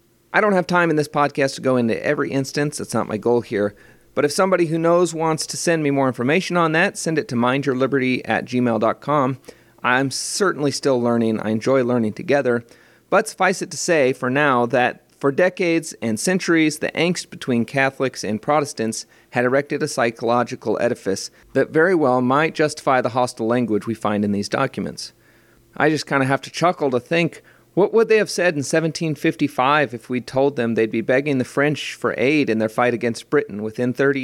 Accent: American